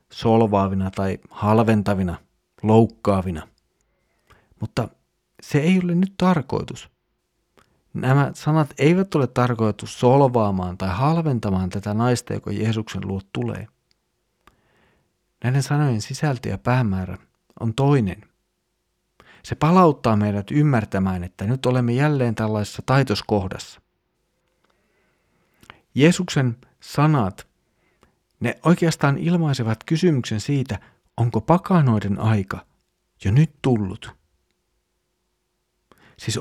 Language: Finnish